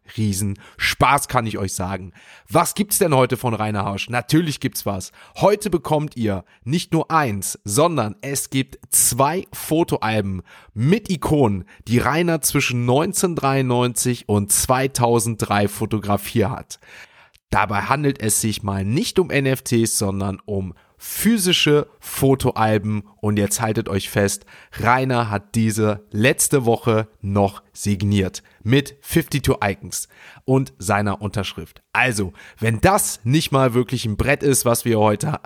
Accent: German